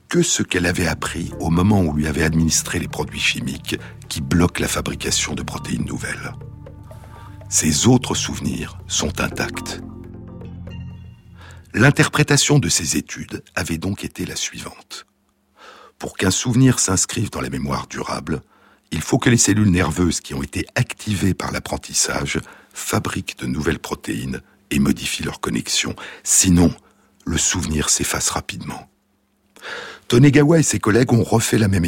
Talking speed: 145 wpm